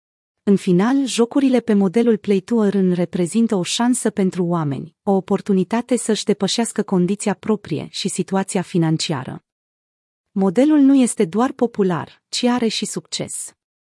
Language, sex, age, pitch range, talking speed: Romanian, female, 30-49, 180-230 Hz, 130 wpm